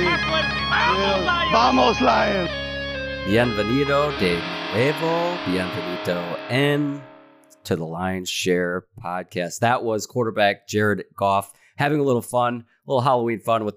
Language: English